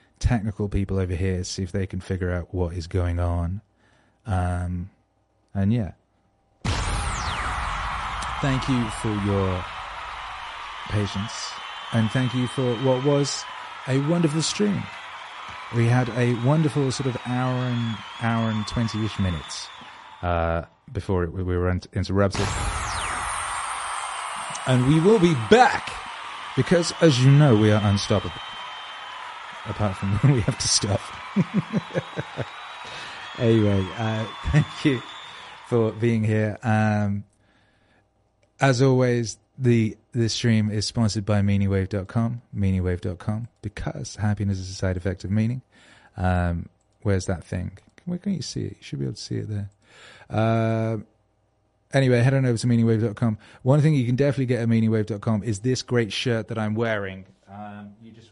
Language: English